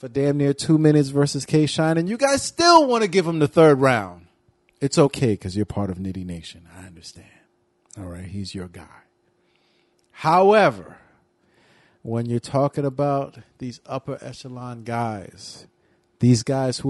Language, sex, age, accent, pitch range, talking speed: English, male, 40-59, American, 100-145 Hz, 160 wpm